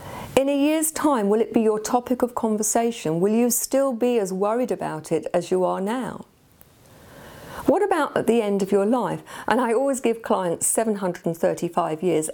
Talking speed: 185 wpm